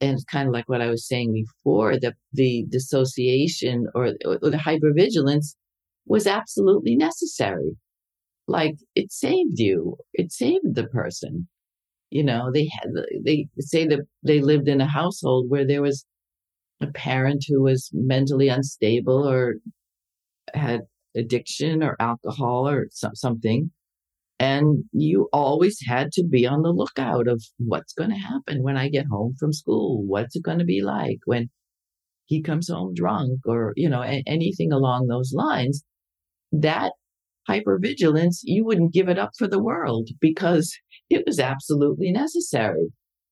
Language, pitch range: English, 125-155 Hz